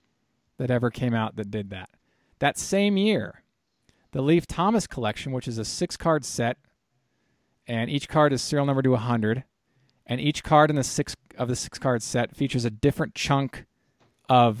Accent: American